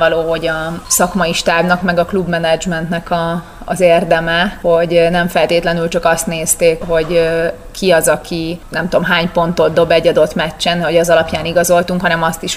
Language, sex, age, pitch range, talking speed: Hungarian, female, 30-49, 165-175 Hz, 170 wpm